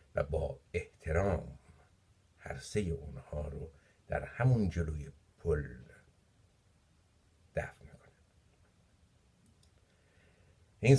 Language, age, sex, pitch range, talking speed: Persian, 60-79, male, 80-100 Hz, 75 wpm